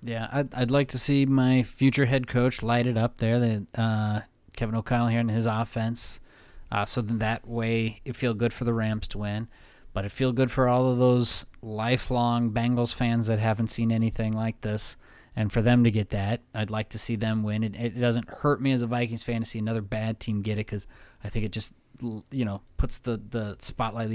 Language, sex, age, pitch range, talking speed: English, male, 30-49, 110-125 Hz, 225 wpm